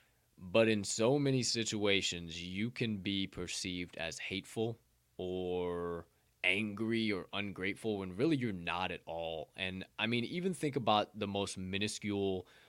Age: 20-39